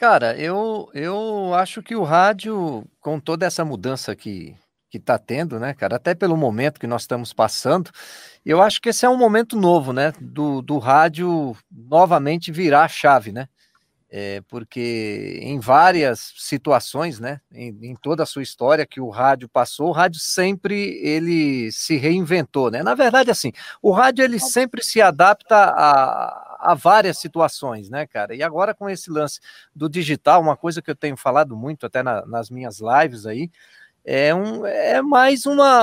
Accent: Brazilian